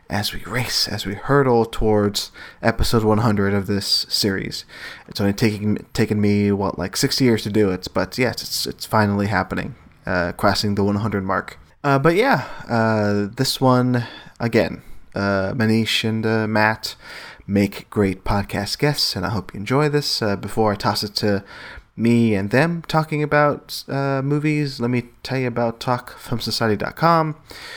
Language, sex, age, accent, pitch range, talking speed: English, male, 20-39, American, 100-120 Hz, 165 wpm